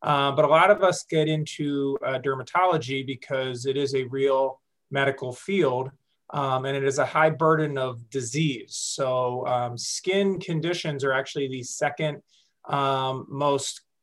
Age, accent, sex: 30-49, American, male